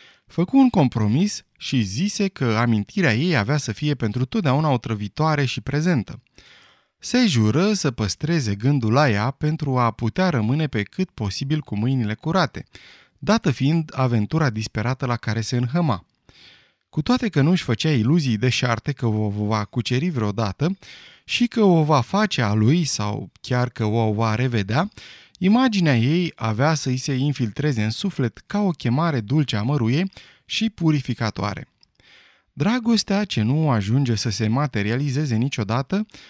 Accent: native